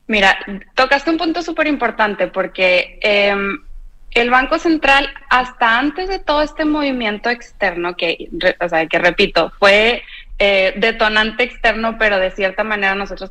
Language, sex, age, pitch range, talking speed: Spanish, female, 20-39, 190-250 Hz, 145 wpm